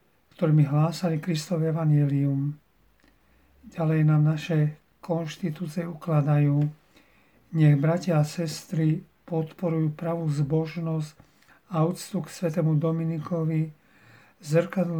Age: 40-59